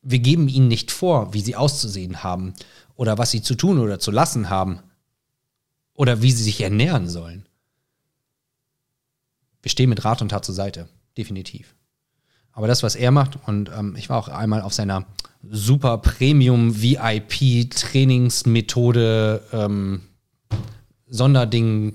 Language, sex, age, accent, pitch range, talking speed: German, male, 30-49, German, 110-135 Hz, 135 wpm